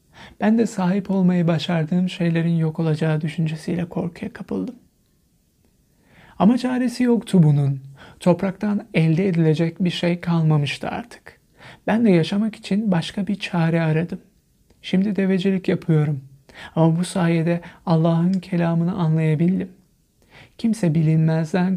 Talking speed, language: 115 wpm, Turkish